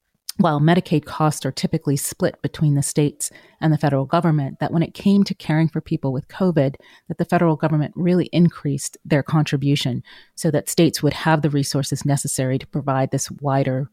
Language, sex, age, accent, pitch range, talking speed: English, female, 30-49, American, 140-160 Hz, 185 wpm